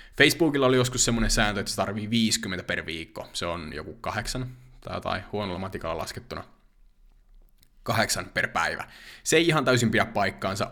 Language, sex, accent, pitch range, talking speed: Finnish, male, native, 100-130 Hz, 160 wpm